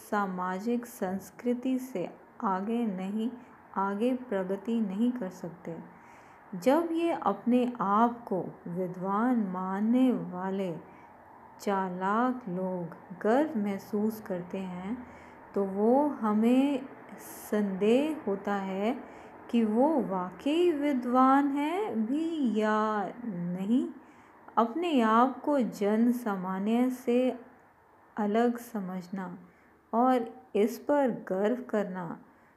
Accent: native